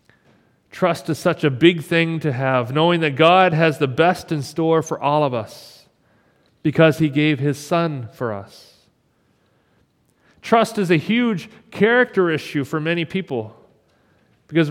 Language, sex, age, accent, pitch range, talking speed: English, male, 40-59, American, 140-175 Hz, 150 wpm